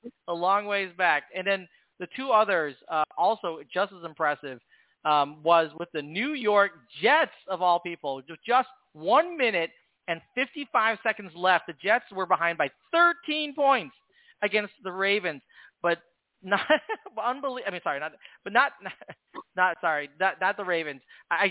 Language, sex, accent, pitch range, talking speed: English, male, American, 165-210 Hz, 165 wpm